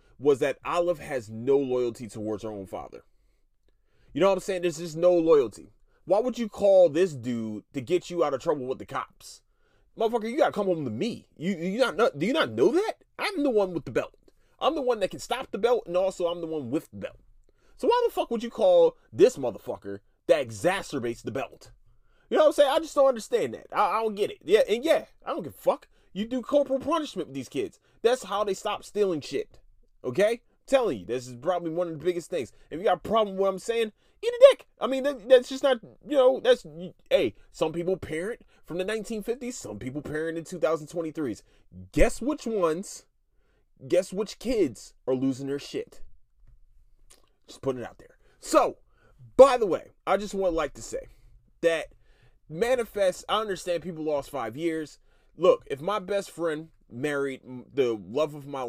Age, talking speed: 30-49, 210 wpm